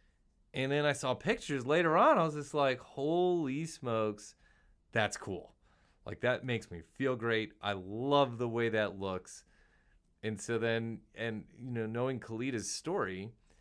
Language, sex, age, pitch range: English, male, 30-49, 95-115 Hz